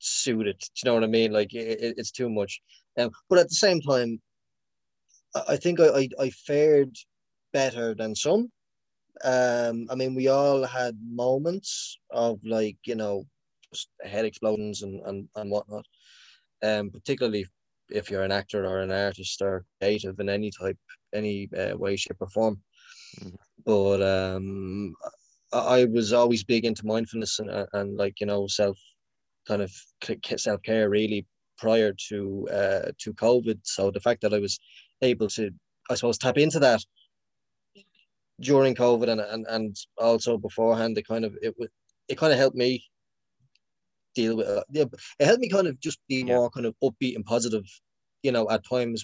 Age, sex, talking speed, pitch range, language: 20-39, male, 175 wpm, 100-120 Hz, English